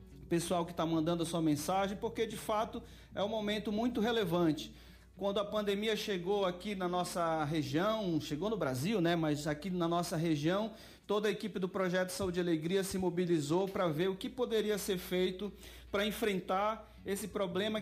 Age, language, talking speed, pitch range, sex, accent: 40-59, Portuguese, 180 wpm, 165-205 Hz, male, Brazilian